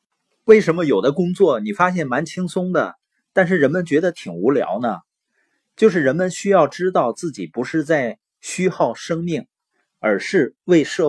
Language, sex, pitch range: Chinese, male, 140-190 Hz